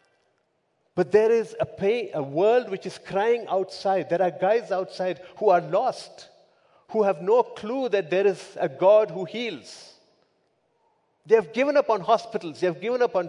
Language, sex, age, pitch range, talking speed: English, male, 50-69, 180-265 Hz, 180 wpm